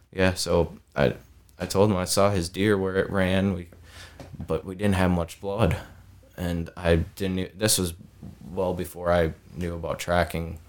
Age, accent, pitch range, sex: 20-39, American, 85-95 Hz, male